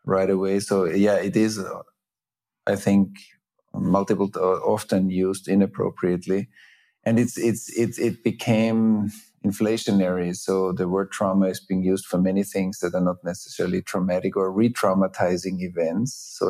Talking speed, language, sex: 140 wpm, English, male